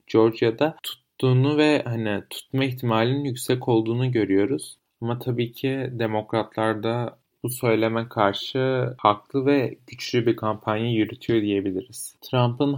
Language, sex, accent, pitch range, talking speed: Turkish, male, native, 105-125 Hz, 115 wpm